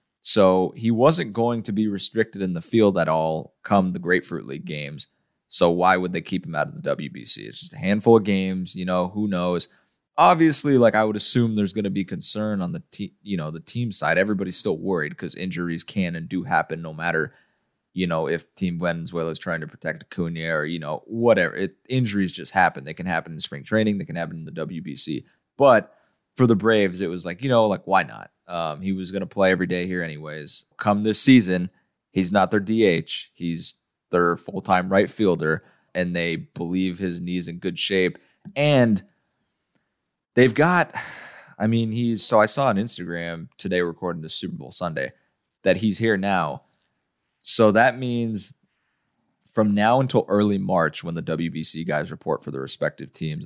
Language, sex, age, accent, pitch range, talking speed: English, male, 20-39, American, 85-110 Hz, 195 wpm